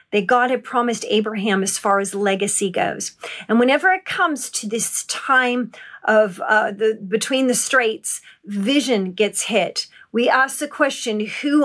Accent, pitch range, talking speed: American, 215-270 Hz, 160 wpm